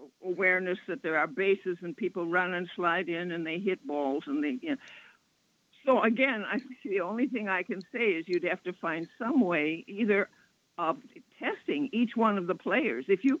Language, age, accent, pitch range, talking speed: English, 60-79, American, 180-250 Hz, 205 wpm